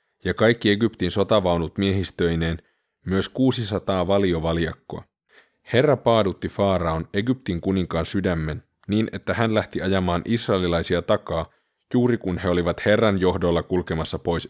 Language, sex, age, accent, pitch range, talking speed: Finnish, male, 30-49, native, 90-110 Hz, 120 wpm